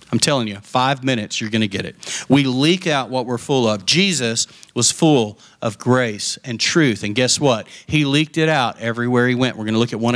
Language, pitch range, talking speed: English, 125-165 Hz, 235 wpm